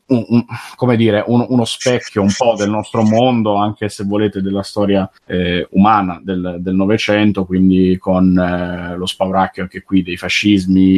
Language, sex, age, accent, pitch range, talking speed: Italian, male, 30-49, native, 95-115 Hz, 165 wpm